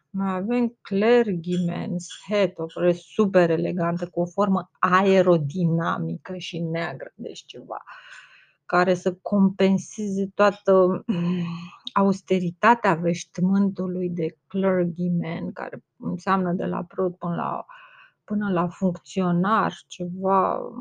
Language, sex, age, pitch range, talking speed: Romanian, female, 30-49, 175-200 Hz, 100 wpm